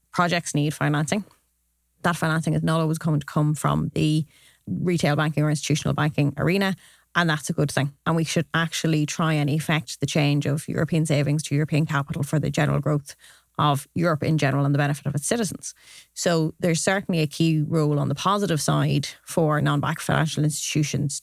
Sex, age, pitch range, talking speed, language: female, 30-49, 145-165 Hz, 190 wpm, English